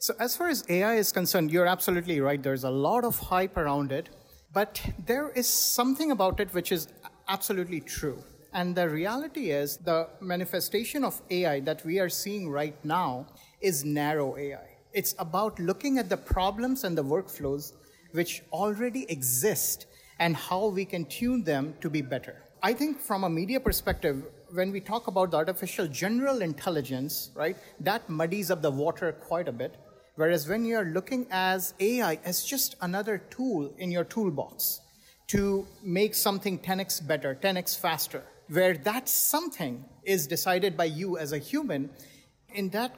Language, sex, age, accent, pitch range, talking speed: English, male, 50-69, Indian, 155-200 Hz, 170 wpm